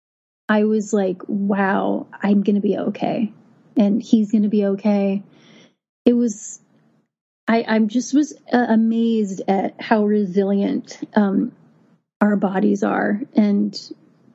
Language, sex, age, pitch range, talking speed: English, female, 30-49, 200-230 Hz, 130 wpm